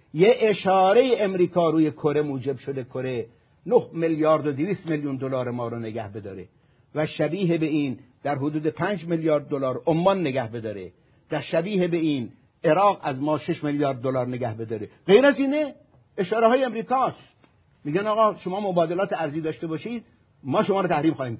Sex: male